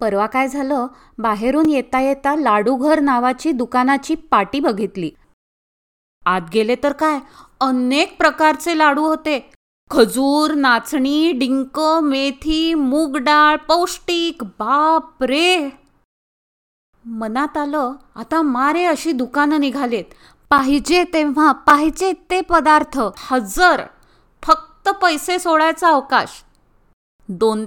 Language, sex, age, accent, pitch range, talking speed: Marathi, female, 20-39, native, 240-310 Hz, 100 wpm